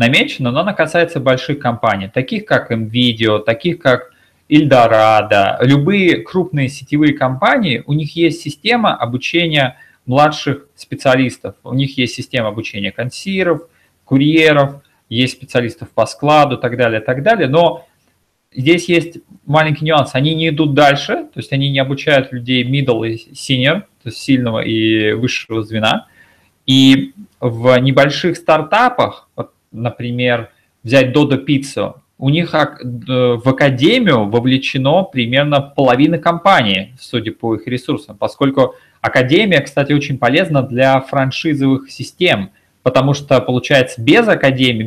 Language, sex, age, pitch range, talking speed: Russian, male, 30-49, 120-150 Hz, 130 wpm